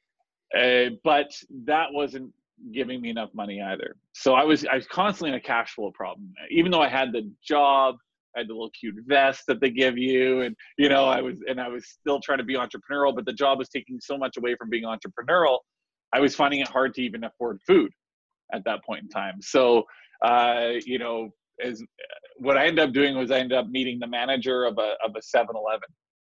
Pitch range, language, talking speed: 120-145 Hz, English, 220 wpm